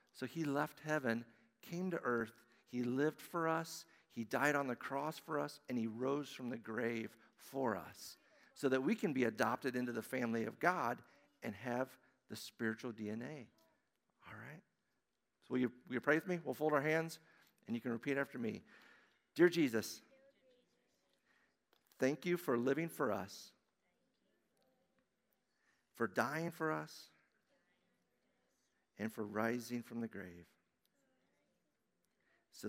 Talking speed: 145 wpm